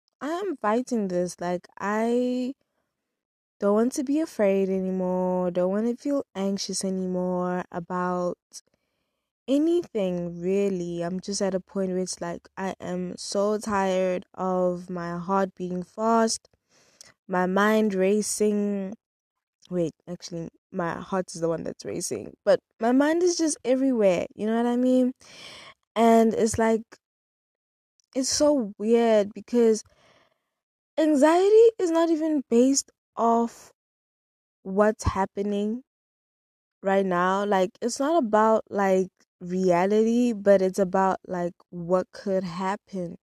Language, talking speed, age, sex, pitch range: English, 125 wpm, 20-39, female, 180-230 Hz